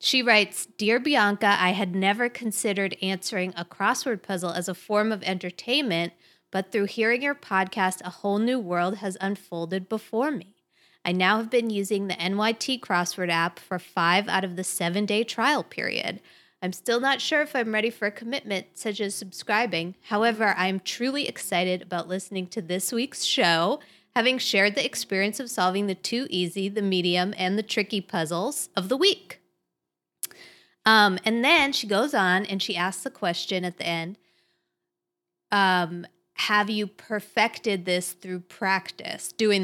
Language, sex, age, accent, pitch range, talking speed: English, female, 20-39, American, 180-220 Hz, 170 wpm